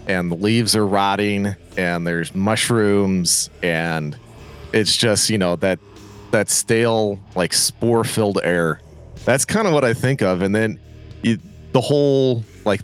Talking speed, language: 155 wpm, English